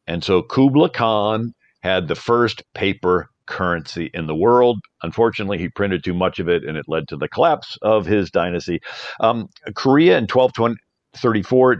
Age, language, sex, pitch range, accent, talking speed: 50-69, English, male, 95-120 Hz, American, 160 wpm